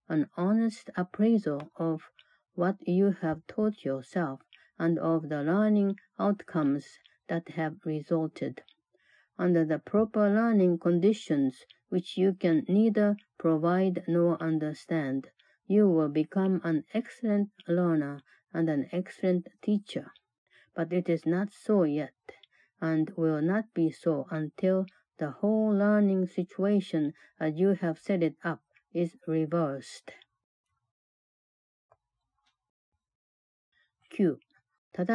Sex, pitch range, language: female, 155-195 Hz, Japanese